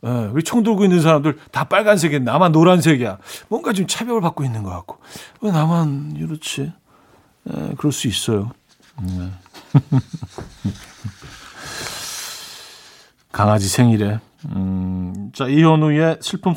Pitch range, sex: 115-160 Hz, male